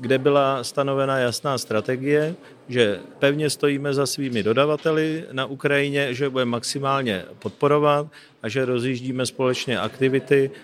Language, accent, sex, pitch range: Czech, native, male, 115-135 Hz